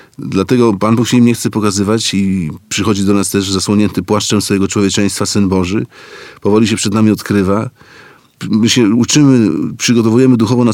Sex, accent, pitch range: male, native, 95-115 Hz